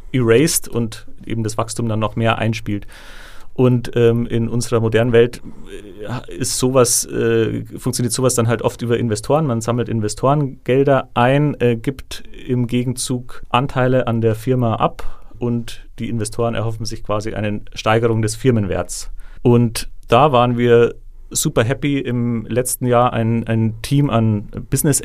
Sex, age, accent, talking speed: male, 40-59, German, 150 wpm